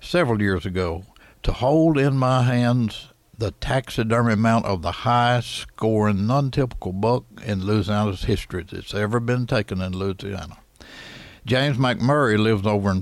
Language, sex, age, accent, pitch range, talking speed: English, male, 60-79, American, 100-135 Hz, 145 wpm